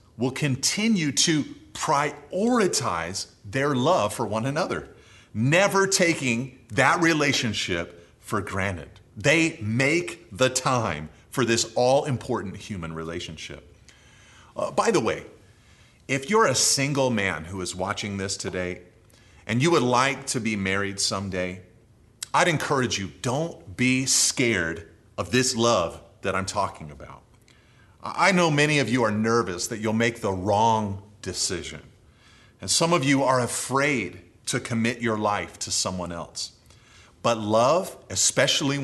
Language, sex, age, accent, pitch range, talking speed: English, male, 30-49, American, 95-130 Hz, 135 wpm